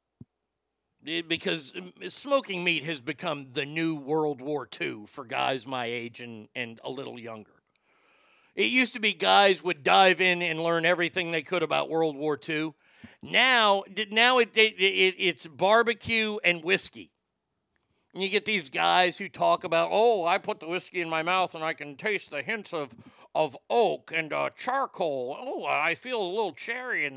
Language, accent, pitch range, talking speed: English, American, 165-230 Hz, 175 wpm